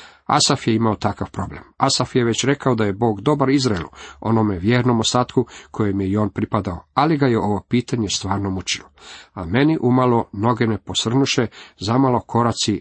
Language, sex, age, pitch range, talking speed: Croatian, male, 40-59, 105-135 Hz, 175 wpm